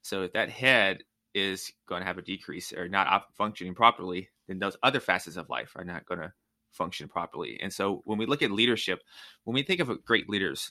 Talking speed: 225 wpm